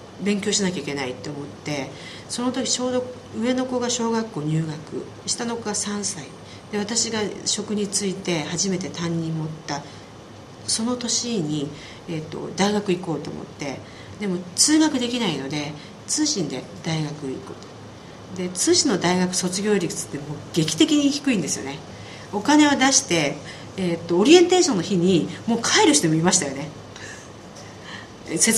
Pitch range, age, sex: 155-250 Hz, 40-59, female